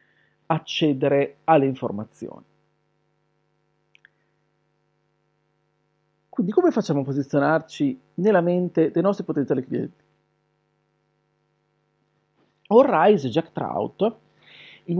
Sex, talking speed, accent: male, 75 wpm, native